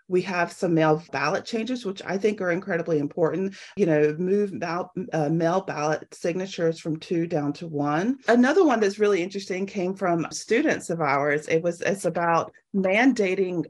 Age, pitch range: 40-59, 160-210 Hz